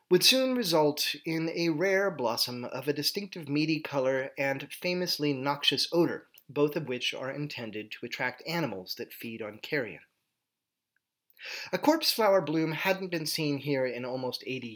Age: 30-49